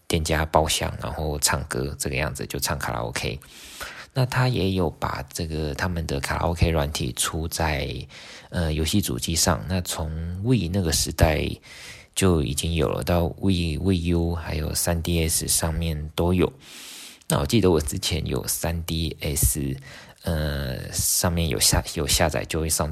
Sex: male